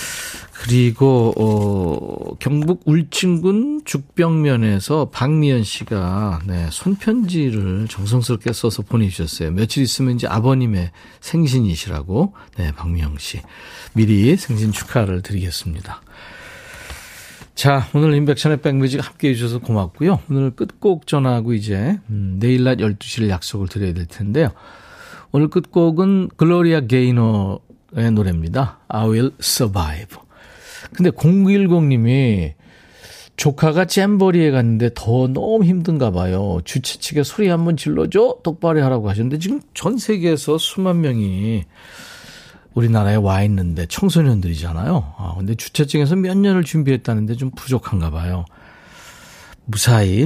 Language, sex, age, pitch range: Korean, male, 40-59, 100-155 Hz